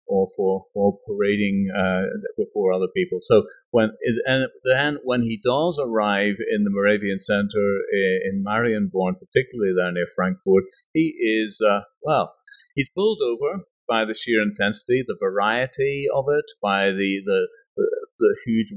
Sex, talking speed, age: male, 155 wpm, 40-59